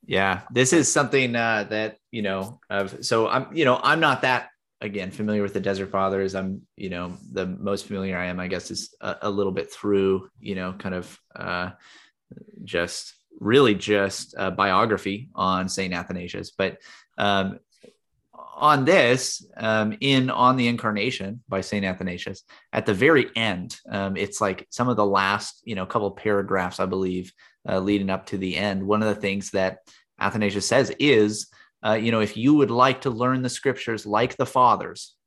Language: English